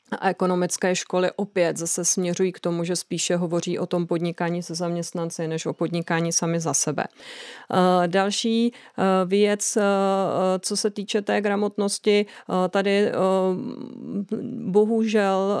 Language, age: Czech, 30-49